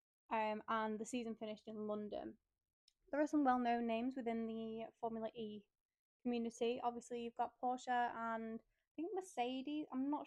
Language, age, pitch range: English, 10-29, 215-250 Hz